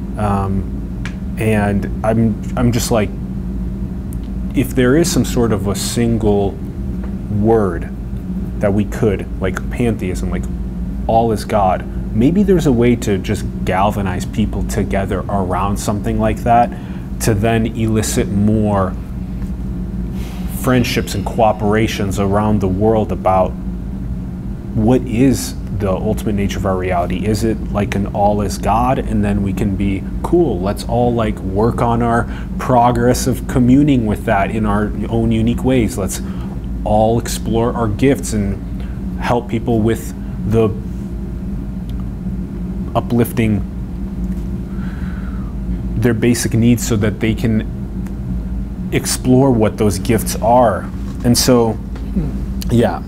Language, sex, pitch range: English, male, 95-115 Hz